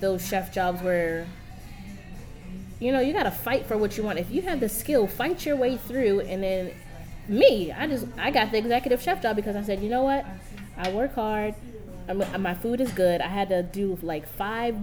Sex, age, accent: female, 20-39, American